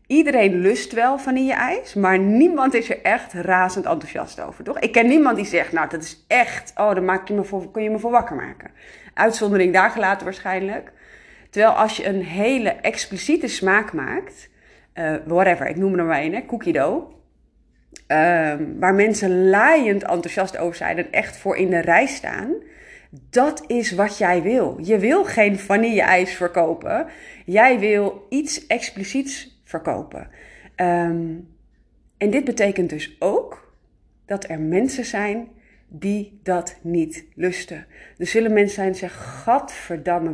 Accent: Dutch